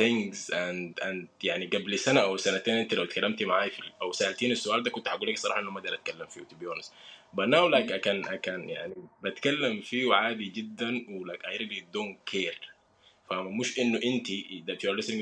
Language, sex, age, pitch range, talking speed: English, male, 20-39, 110-130 Hz, 200 wpm